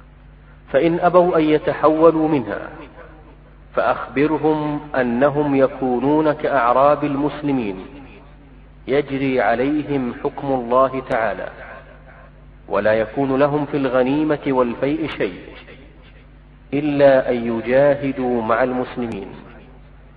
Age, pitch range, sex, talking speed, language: 40-59, 130-150 Hz, male, 80 wpm, Arabic